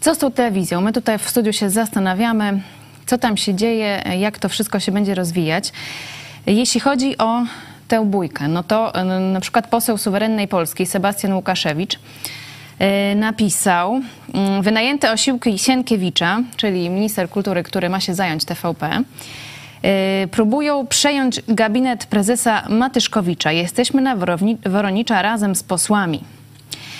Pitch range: 170-220 Hz